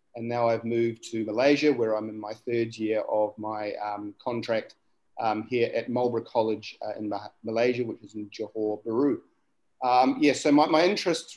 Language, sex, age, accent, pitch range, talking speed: English, male, 40-59, Australian, 110-135 Hz, 185 wpm